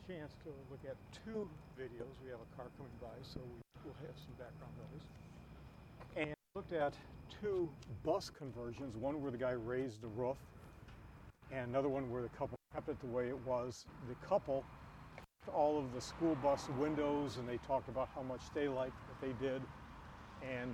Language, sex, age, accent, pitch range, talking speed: English, male, 50-69, American, 120-140 Hz, 180 wpm